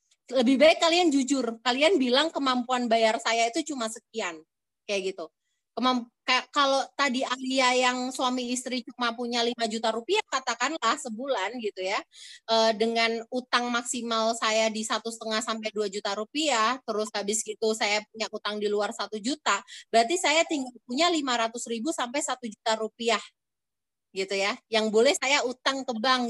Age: 30-49